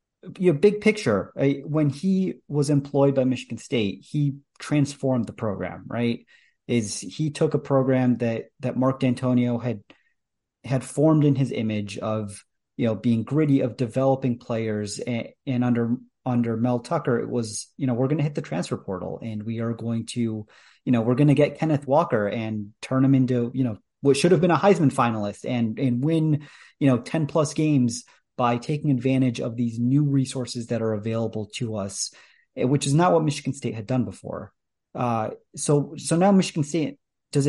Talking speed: 190 wpm